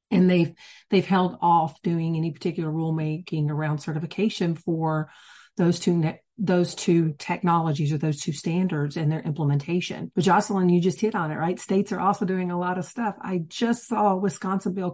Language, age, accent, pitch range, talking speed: English, 40-59, American, 155-180 Hz, 180 wpm